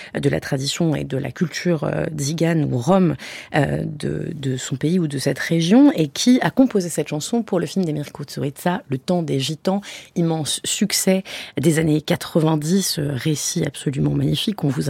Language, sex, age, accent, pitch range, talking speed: French, female, 30-49, French, 150-195 Hz, 185 wpm